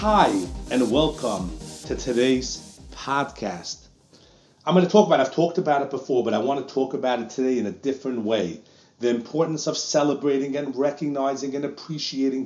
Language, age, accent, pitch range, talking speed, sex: English, 40-59, American, 120-170 Hz, 175 wpm, male